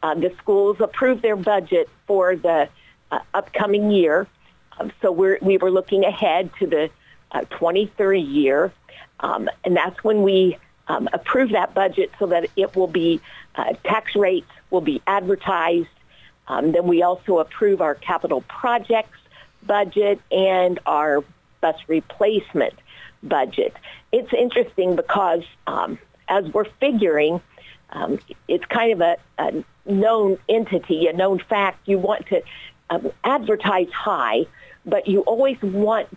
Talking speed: 140 wpm